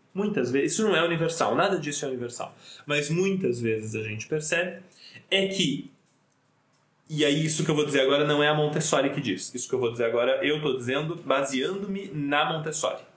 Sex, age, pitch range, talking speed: male, 20-39, 125-190 Hz, 200 wpm